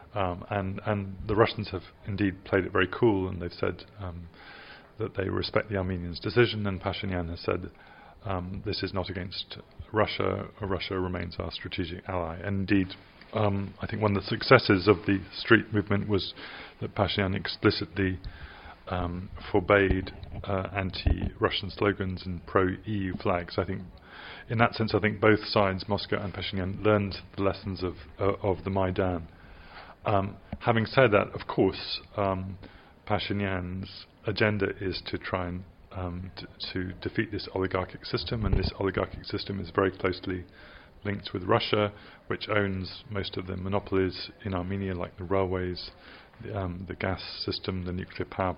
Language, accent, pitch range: English, British, 90-100 Hz